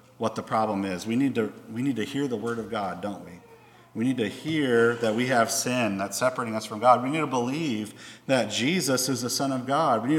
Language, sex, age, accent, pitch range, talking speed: English, male, 50-69, American, 110-150 Hz, 255 wpm